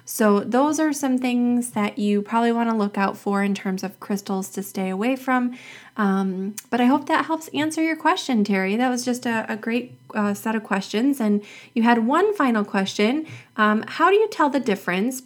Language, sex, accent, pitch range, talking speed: English, female, American, 200-250 Hz, 210 wpm